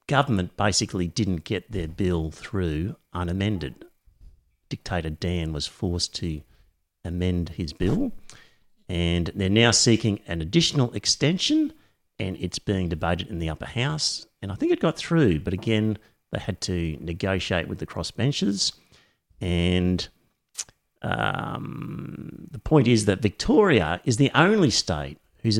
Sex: male